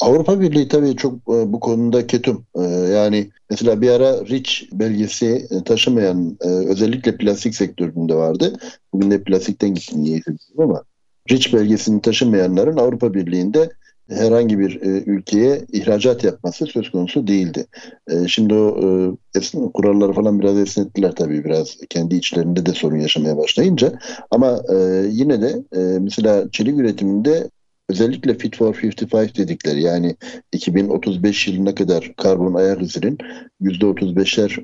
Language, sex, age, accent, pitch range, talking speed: Turkish, male, 60-79, native, 90-115 Hz, 135 wpm